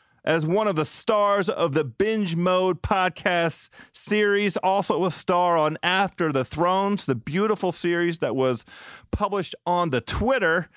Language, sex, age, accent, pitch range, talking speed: English, male, 40-59, American, 145-205 Hz, 150 wpm